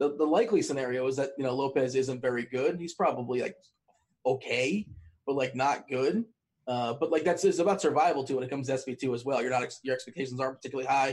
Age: 30-49